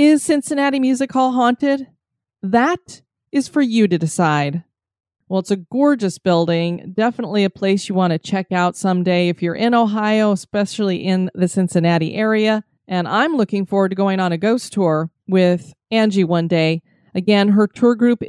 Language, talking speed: English, 170 wpm